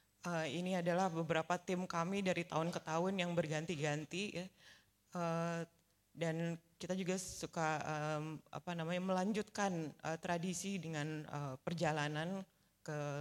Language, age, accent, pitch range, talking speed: Indonesian, 30-49, native, 155-195 Hz, 125 wpm